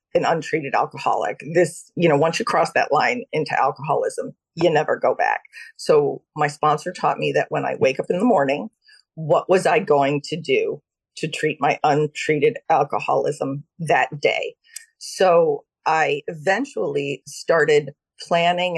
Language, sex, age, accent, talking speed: English, female, 40-59, American, 155 wpm